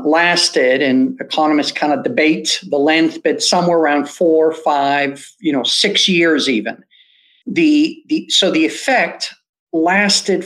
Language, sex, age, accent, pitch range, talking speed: English, male, 50-69, American, 155-230 Hz, 140 wpm